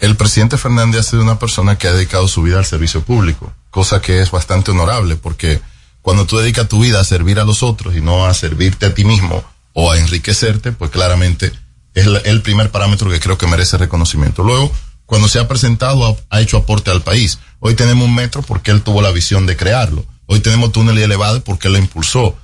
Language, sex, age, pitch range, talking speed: Spanish, male, 40-59, 95-115 Hz, 215 wpm